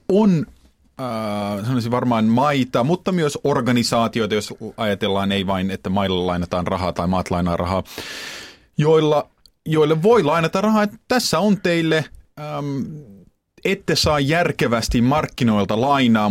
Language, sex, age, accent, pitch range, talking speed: Finnish, male, 30-49, native, 100-140 Hz, 130 wpm